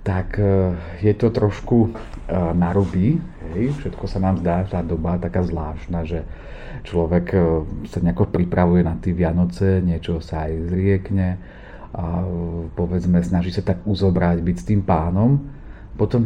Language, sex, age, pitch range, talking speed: Slovak, male, 30-49, 85-105 Hz, 140 wpm